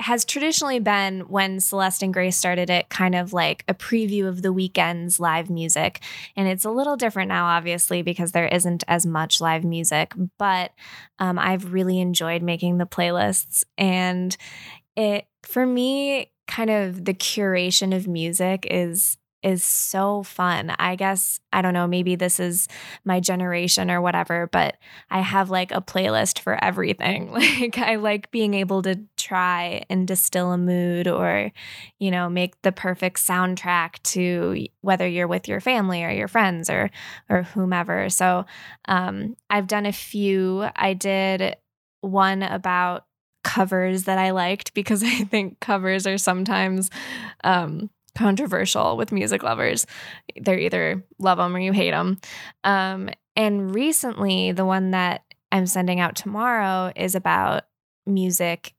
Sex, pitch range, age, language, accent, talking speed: female, 175-195 Hz, 10-29, English, American, 155 wpm